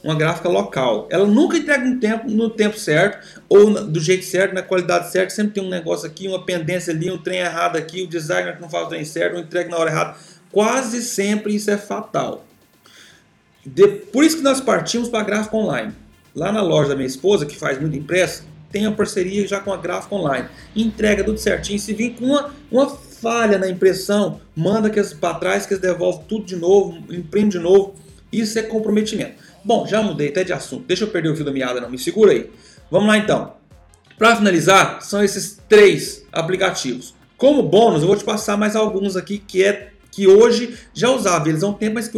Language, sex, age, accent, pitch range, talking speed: Portuguese, male, 30-49, Brazilian, 170-215 Hz, 215 wpm